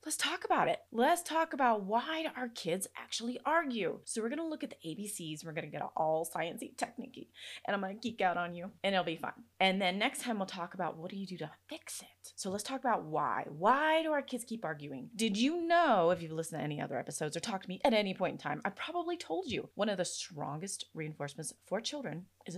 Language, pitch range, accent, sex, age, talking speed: English, 170-250 Hz, American, female, 30-49, 260 wpm